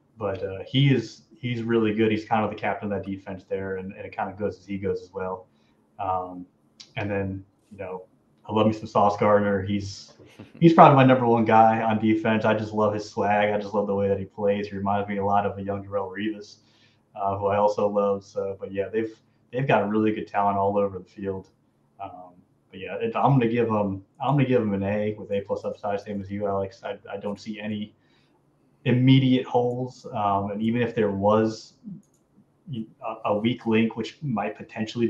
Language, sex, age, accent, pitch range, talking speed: English, male, 20-39, American, 100-115 Hz, 220 wpm